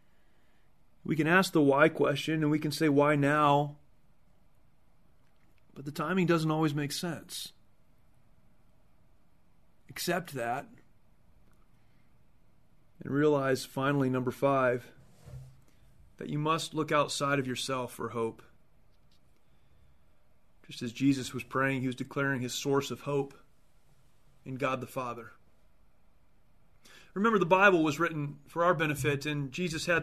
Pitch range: 140-180 Hz